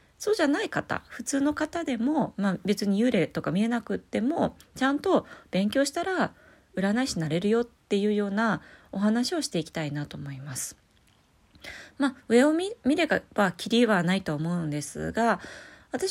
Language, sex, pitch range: Japanese, female, 165-240 Hz